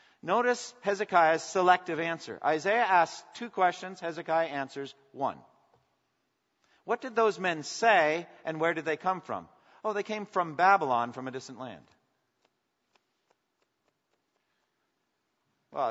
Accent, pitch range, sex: American, 130-180 Hz, male